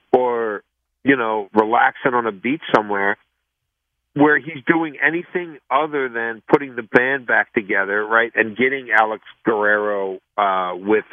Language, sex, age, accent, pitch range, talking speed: English, male, 50-69, American, 105-130 Hz, 140 wpm